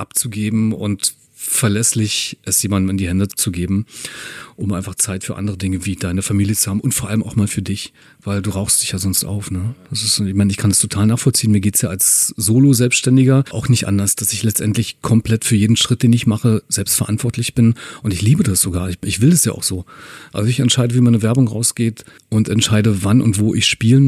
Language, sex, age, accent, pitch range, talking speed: German, male, 40-59, German, 105-125 Hz, 225 wpm